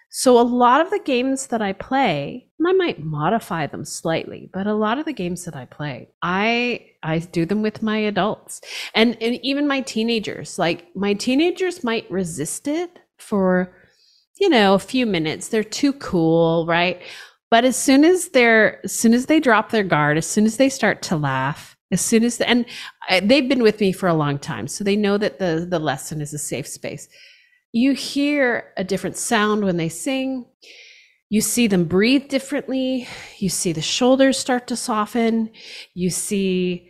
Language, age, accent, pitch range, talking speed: English, 30-49, American, 170-250 Hz, 190 wpm